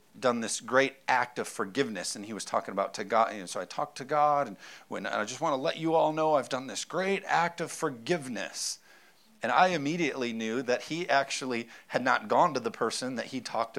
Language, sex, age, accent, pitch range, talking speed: English, male, 40-59, American, 135-175 Hz, 225 wpm